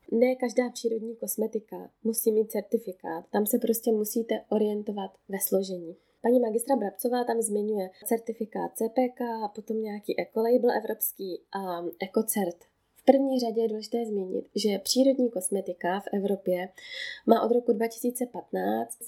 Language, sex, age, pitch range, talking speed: Czech, female, 20-39, 205-240 Hz, 130 wpm